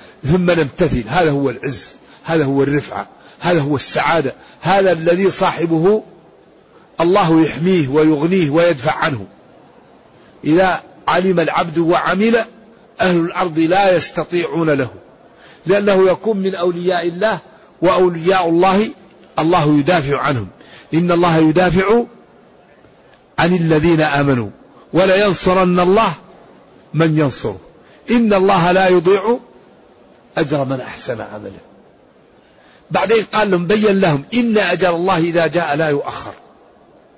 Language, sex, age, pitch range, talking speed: Arabic, male, 50-69, 165-210 Hz, 110 wpm